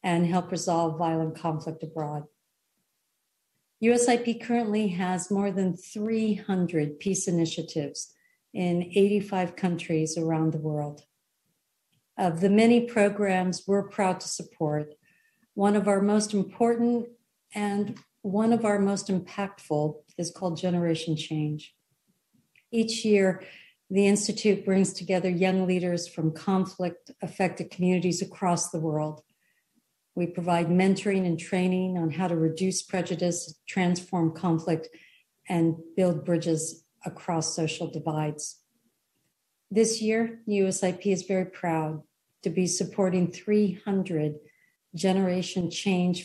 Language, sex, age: English, female, 50-69